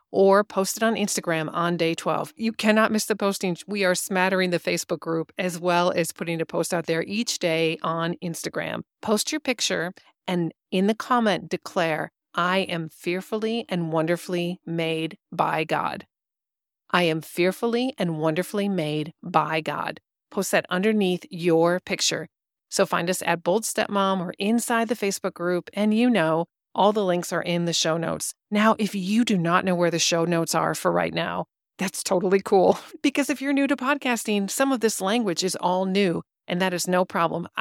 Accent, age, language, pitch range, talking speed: American, 40-59, English, 170-215 Hz, 185 wpm